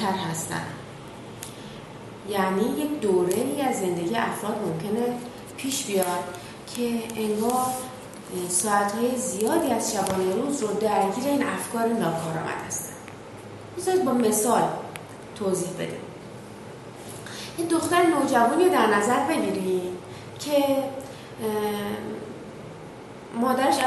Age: 30-49